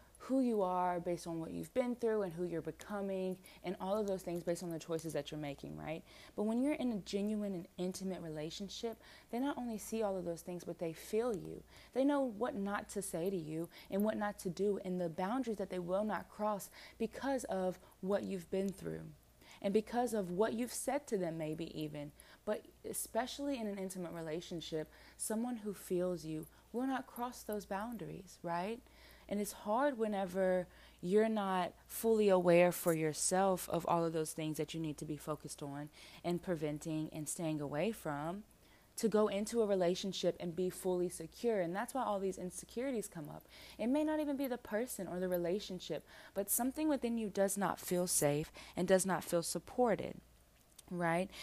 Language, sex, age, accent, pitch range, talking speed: English, female, 20-39, American, 175-215 Hz, 195 wpm